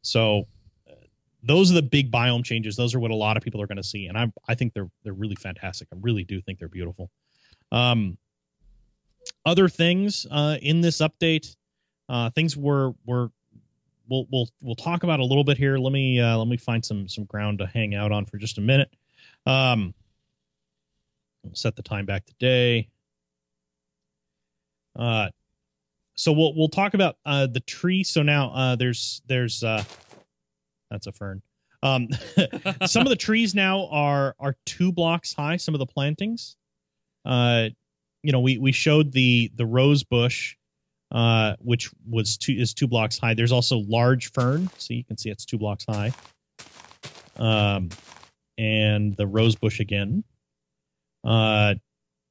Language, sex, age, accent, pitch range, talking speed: English, male, 30-49, American, 105-135 Hz, 170 wpm